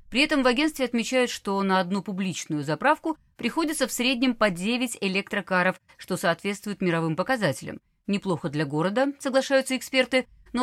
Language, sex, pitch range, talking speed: Russian, female, 165-235 Hz, 145 wpm